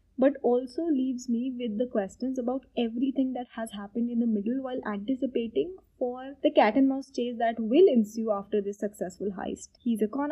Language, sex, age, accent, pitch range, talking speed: English, female, 20-39, Indian, 215-270 Hz, 190 wpm